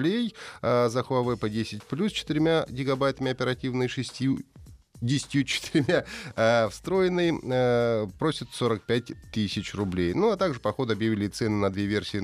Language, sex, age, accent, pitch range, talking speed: Russian, male, 30-49, native, 95-130 Hz, 130 wpm